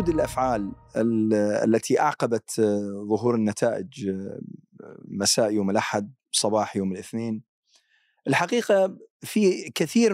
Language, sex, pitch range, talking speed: Arabic, male, 110-170 Hz, 85 wpm